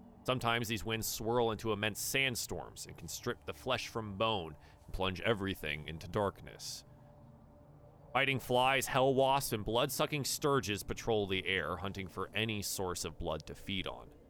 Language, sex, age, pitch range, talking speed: English, male, 30-49, 95-130 Hz, 160 wpm